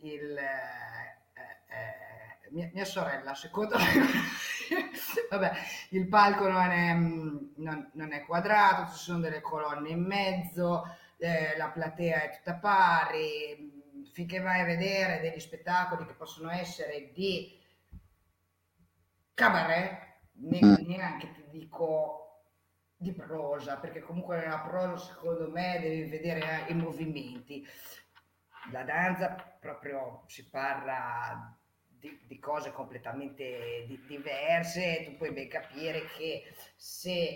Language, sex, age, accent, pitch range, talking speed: Italian, female, 30-49, native, 145-180 Hz, 120 wpm